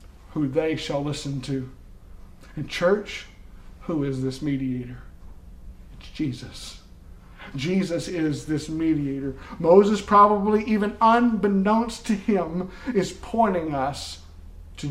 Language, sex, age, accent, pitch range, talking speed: English, male, 50-69, American, 140-210 Hz, 110 wpm